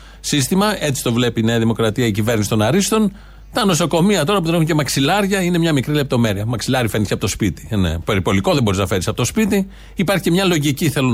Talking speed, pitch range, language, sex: 220 wpm, 115-160 Hz, Greek, male